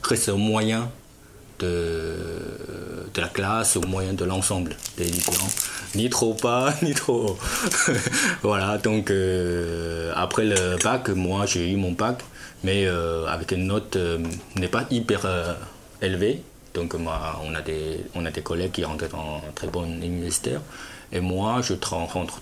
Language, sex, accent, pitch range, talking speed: French, male, French, 85-105 Hz, 160 wpm